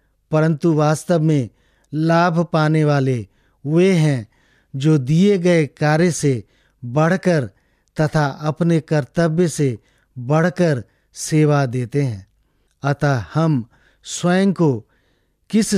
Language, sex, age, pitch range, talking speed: English, male, 50-69, 130-165 Hz, 105 wpm